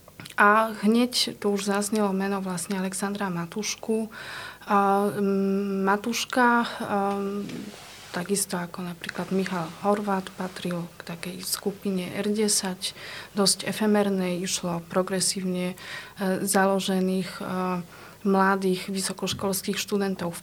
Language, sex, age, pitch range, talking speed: Slovak, female, 30-49, 185-205 Hz, 95 wpm